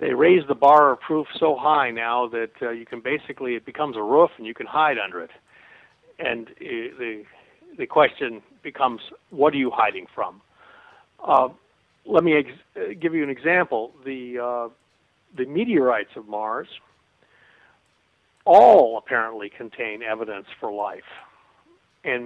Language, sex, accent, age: English, male, American, 50-69